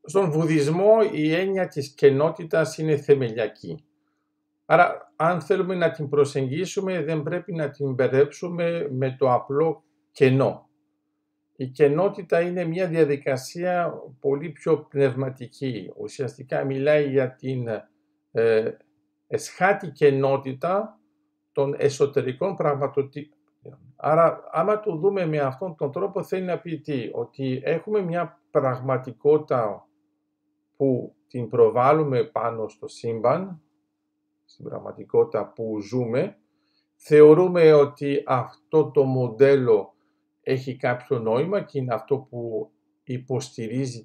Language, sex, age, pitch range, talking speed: Greek, male, 50-69, 135-200 Hz, 110 wpm